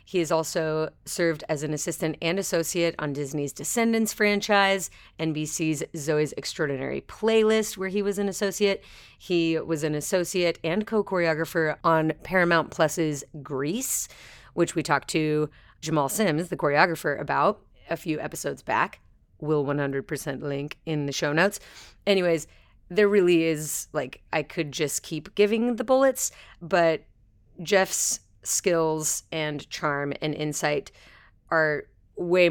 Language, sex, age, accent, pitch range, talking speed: English, female, 30-49, American, 145-180 Hz, 135 wpm